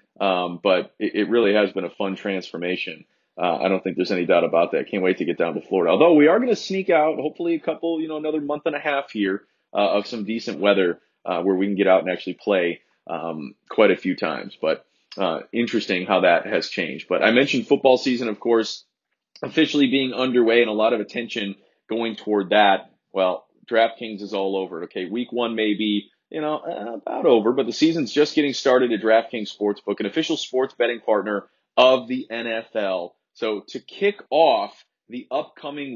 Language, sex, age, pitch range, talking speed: English, male, 30-49, 105-140 Hz, 210 wpm